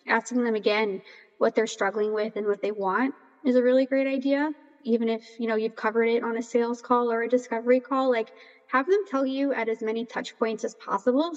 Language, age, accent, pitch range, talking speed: English, 20-39, American, 210-255 Hz, 225 wpm